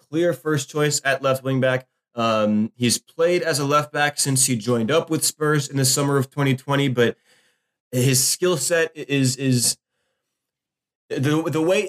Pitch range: 120-150 Hz